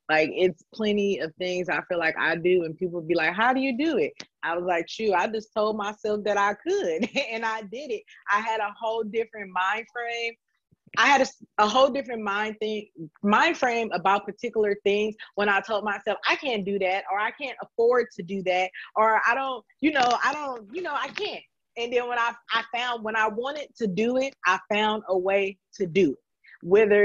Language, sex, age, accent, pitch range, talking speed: English, female, 20-39, American, 190-235 Hz, 220 wpm